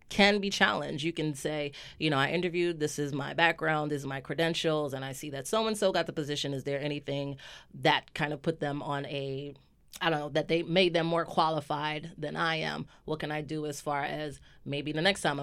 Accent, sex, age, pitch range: American, female, 30-49, 145-170 Hz